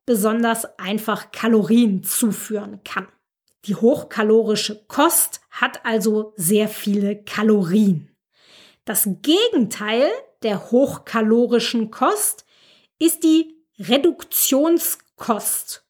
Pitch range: 210-295 Hz